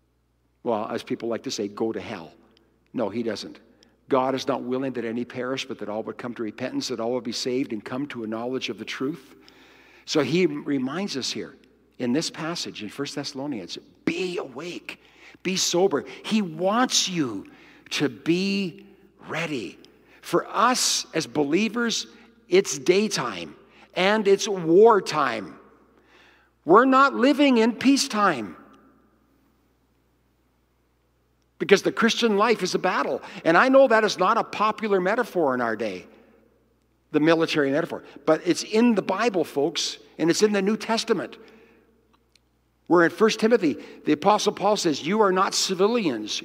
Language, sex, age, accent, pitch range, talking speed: English, male, 60-79, American, 135-220 Hz, 155 wpm